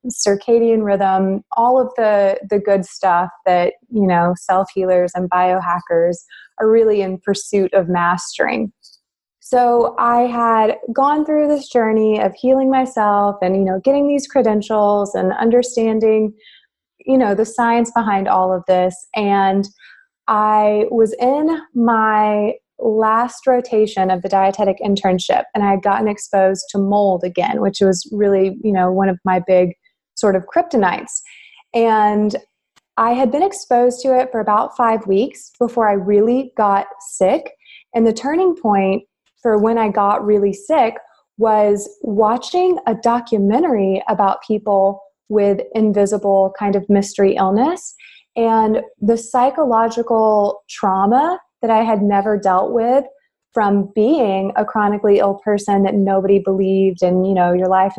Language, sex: English, female